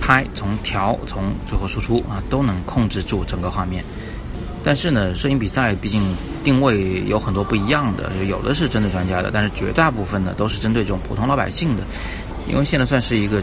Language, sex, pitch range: Chinese, male, 95-115 Hz